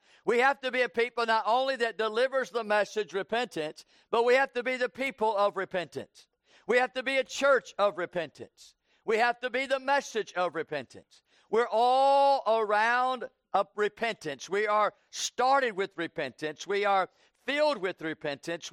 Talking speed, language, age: 165 wpm, English, 50-69